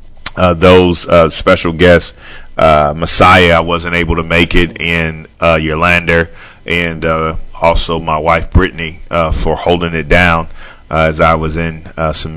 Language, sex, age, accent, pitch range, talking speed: English, male, 30-49, American, 80-90 Hz, 170 wpm